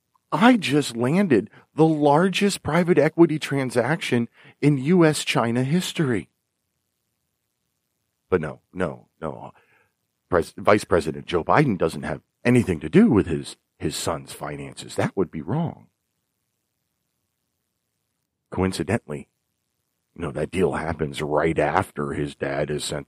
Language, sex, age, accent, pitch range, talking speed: English, male, 40-59, American, 95-140 Hz, 110 wpm